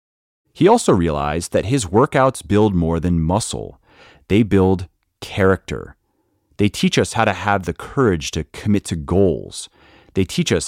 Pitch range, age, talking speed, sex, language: 80-115 Hz, 30-49, 155 wpm, male, English